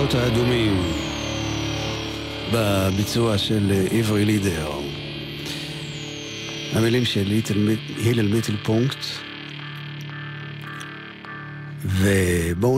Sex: male